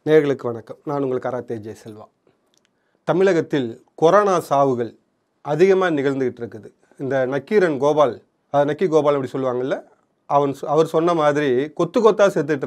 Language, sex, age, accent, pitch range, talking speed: Tamil, male, 30-49, native, 150-190 Hz, 135 wpm